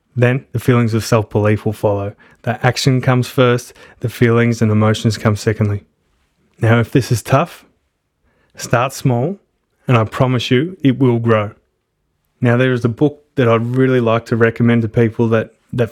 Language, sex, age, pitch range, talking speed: English, male, 20-39, 115-125 Hz, 175 wpm